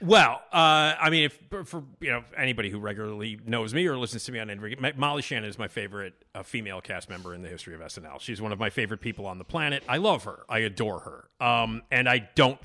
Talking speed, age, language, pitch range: 250 wpm, 40-59, English, 105-140 Hz